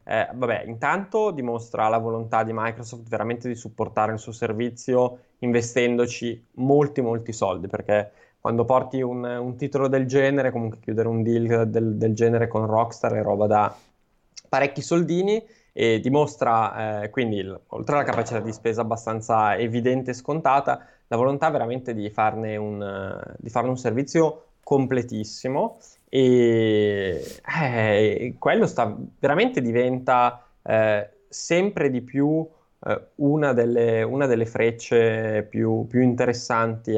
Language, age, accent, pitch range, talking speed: Italian, 20-39, native, 110-135 Hz, 135 wpm